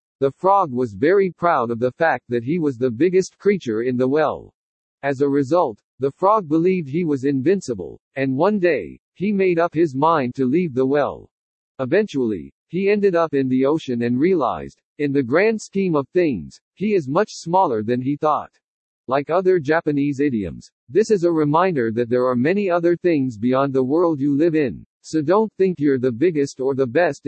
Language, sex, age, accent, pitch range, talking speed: English, male, 60-79, American, 135-180 Hz, 195 wpm